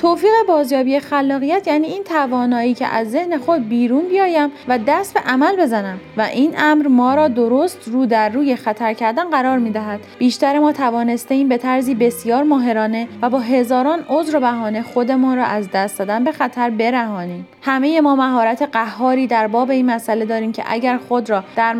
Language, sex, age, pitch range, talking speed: Persian, female, 30-49, 225-290 Hz, 185 wpm